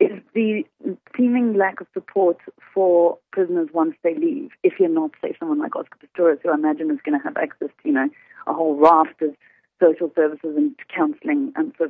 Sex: female